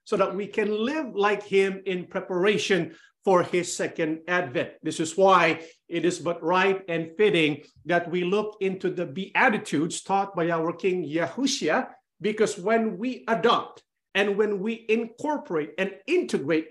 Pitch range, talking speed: 180-215 Hz, 155 wpm